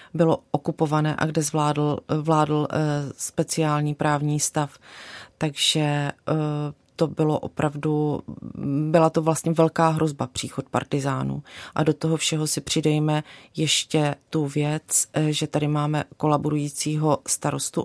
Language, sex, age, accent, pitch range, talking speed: Czech, female, 30-49, native, 145-155 Hz, 115 wpm